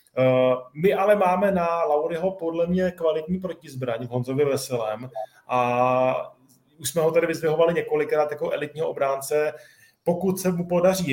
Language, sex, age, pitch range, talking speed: Czech, male, 20-39, 130-155 Hz, 135 wpm